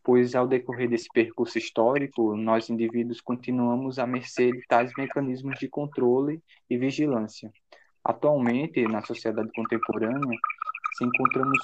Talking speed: 125 wpm